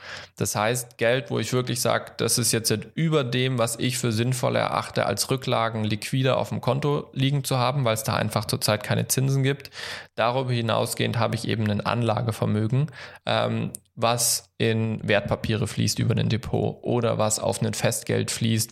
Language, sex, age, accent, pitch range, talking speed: German, male, 10-29, German, 105-120 Hz, 175 wpm